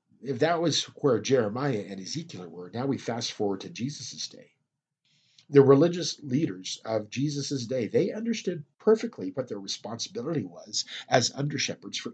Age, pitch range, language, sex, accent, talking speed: 50-69, 120-155 Hz, English, male, American, 155 wpm